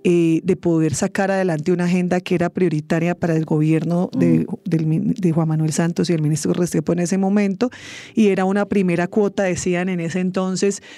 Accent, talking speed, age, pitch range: Colombian, 190 wpm, 30-49, 165-195 Hz